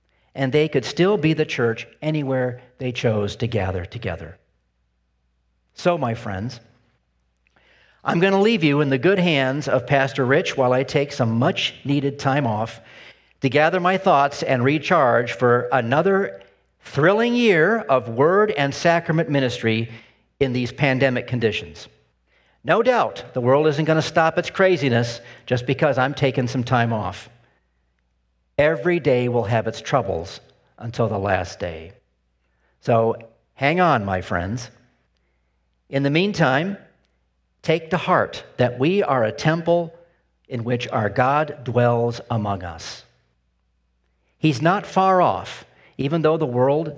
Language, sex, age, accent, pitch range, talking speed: English, male, 50-69, American, 95-150 Hz, 145 wpm